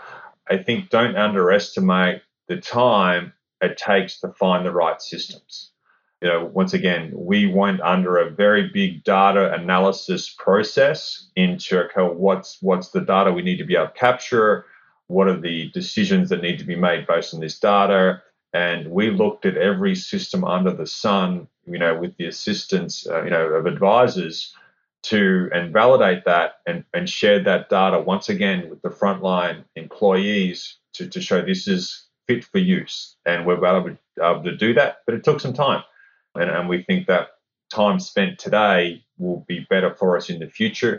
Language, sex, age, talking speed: English, male, 30-49, 175 wpm